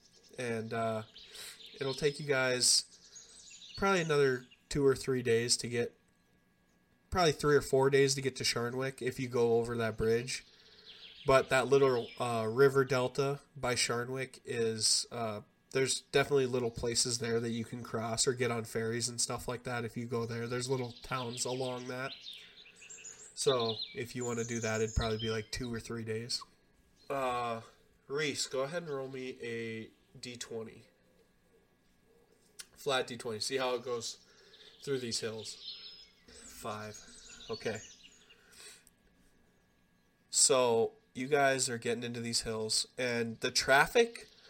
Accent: American